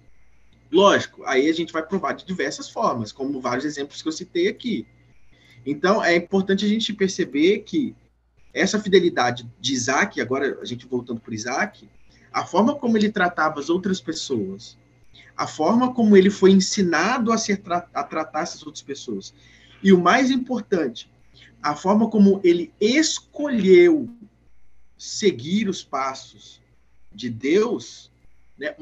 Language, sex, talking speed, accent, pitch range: Portuguese, male, 145 wpm, Brazilian, 125-215 Hz